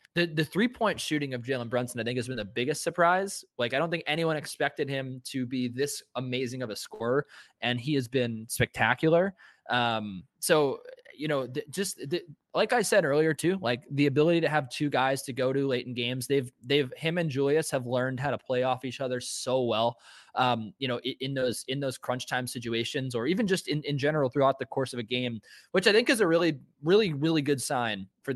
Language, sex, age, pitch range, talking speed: English, male, 20-39, 125-150 Hz, 225 wpm